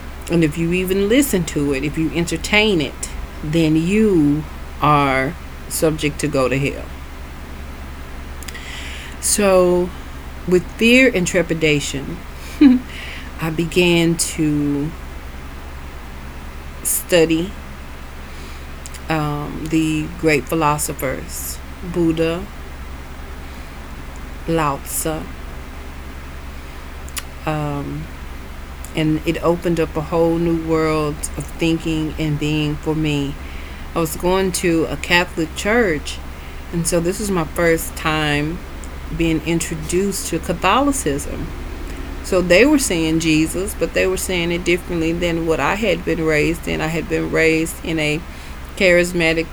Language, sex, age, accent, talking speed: English, female, 40-59, American, 110 wpm